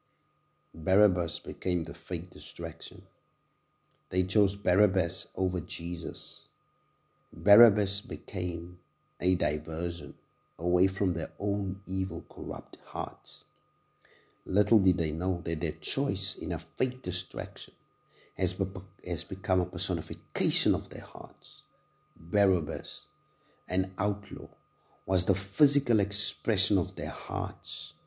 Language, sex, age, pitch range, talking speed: English, male, 50-69, 85-105 Hz, 105 wpm